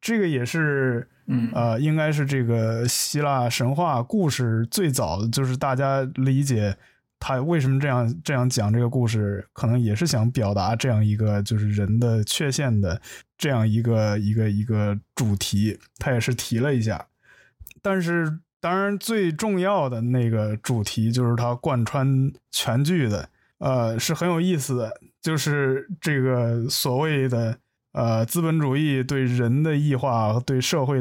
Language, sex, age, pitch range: Chinese, male, 20-39, 115-145 Hz